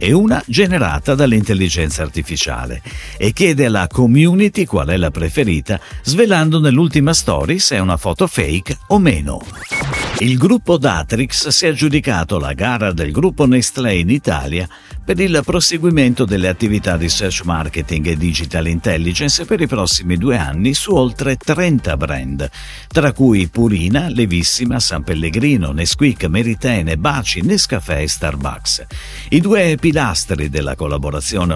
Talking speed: 140 wpm